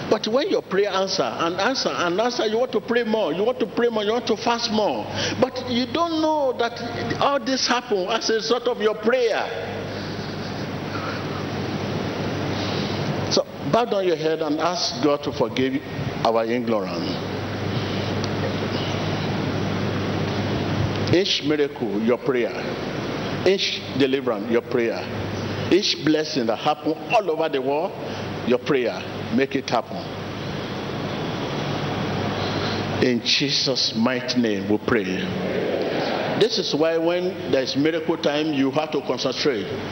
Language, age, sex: English, 50-69, male